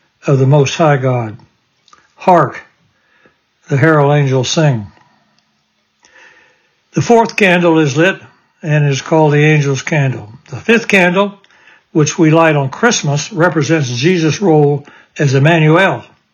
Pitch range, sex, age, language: 140-170 Hz, male, 60-79, English